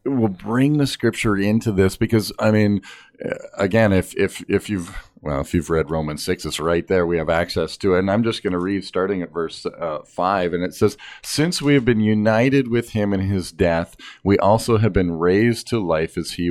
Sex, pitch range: male, 85-115 Hz